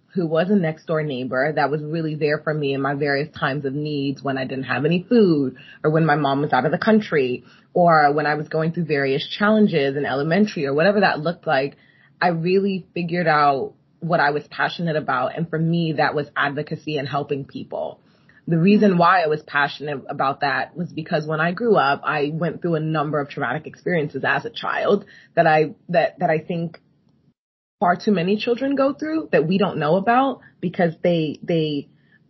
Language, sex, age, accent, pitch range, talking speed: English, female, 20-39, American, 150-180 Hz, 205 wpm